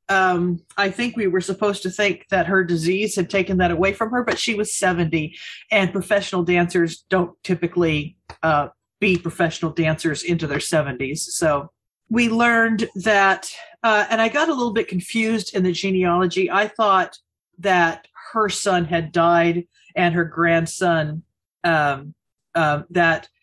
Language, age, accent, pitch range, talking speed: English, 40-59, American, 160-195 Hz, 155 wpm